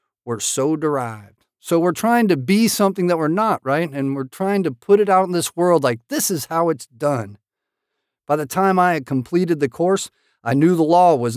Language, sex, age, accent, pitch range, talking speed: English, male, 50-69, American, 140-195 Hz, 220 wpm